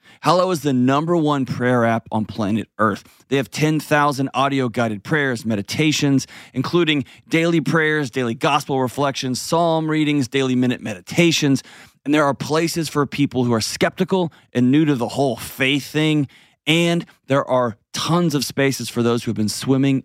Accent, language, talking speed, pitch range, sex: American, English, 170 wpm, 120-155 Hz, male